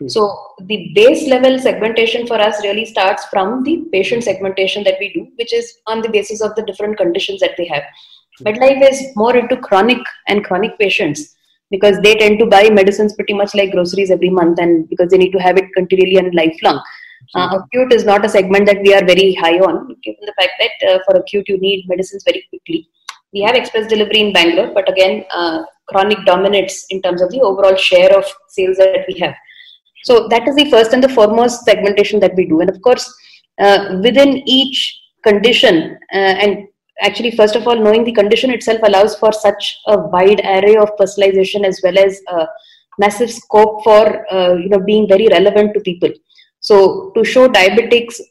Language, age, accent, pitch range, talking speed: English, 20-39, Indian, 190-235 Hz, 200 wpm